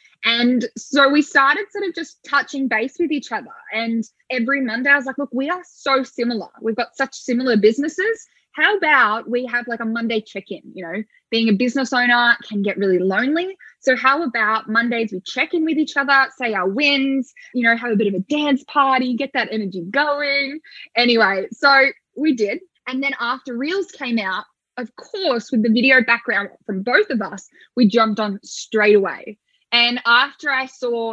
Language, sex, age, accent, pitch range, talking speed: English, female, 10-29, Australian, 220-275 Hz, 195 wpm